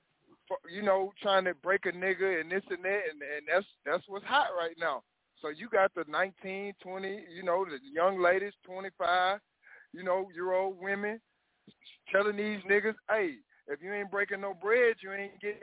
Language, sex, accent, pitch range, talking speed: English, male, American, 180-215 Hz, 190 wpm